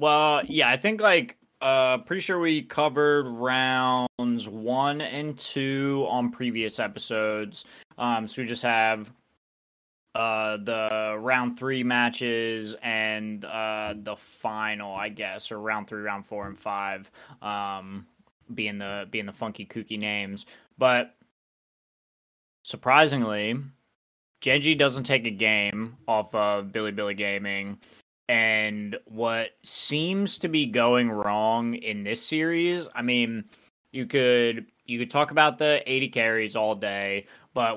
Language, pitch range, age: English, 110-130 Hz, 20-39